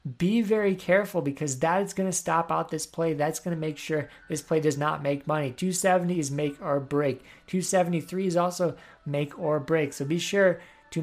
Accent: American